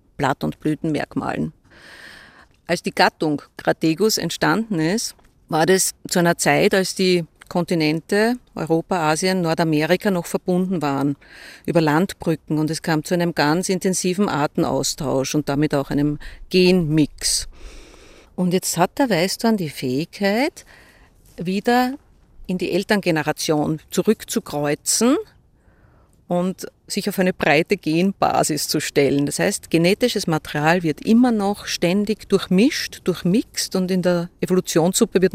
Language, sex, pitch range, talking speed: German, female, 160-205 Hz, 125 wpm